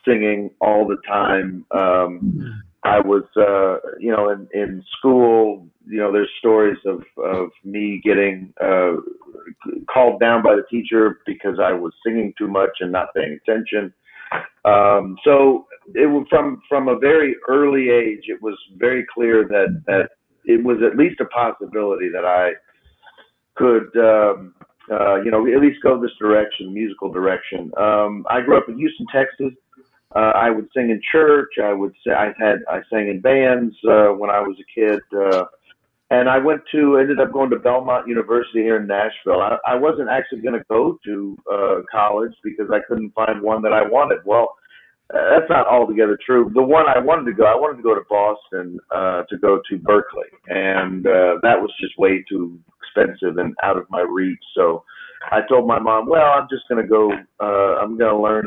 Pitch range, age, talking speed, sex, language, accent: 100-125 Hz, 50-69, 190 wpm, male, English, American